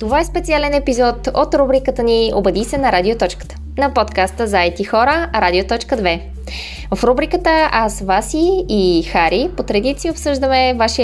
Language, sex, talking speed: Bulgarian, female, 145 wpm